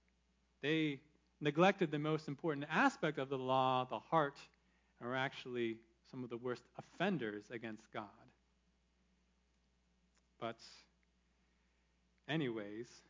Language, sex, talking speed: English, male, 105 wpm